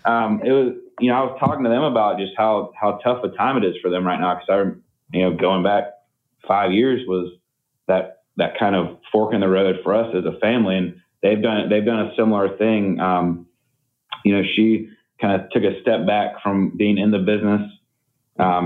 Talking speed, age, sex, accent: 220 wpm, 30-49, male, American